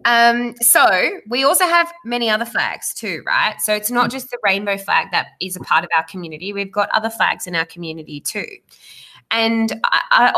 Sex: female